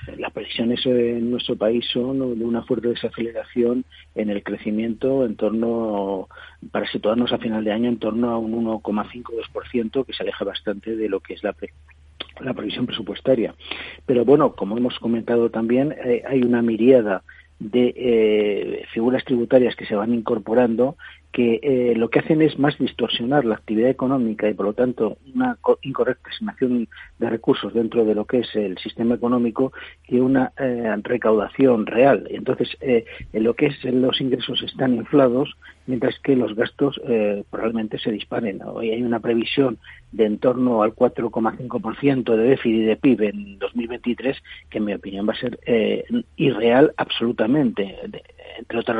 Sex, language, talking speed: male, Spanish, 165 wpm